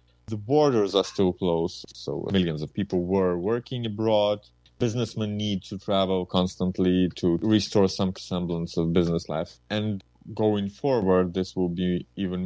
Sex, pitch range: male, 85-100 Hz